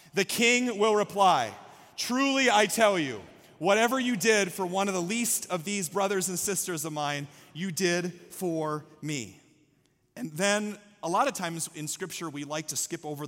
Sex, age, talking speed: male, 30-49, 180 wpm